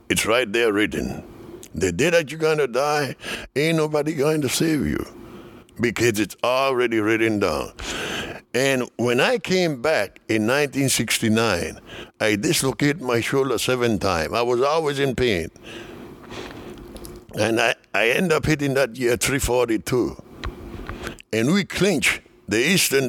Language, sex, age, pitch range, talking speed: English, male, 60-79, 120-175 Hz, 140 wpm